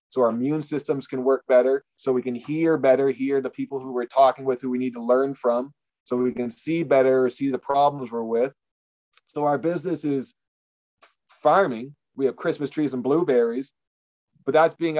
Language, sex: English, male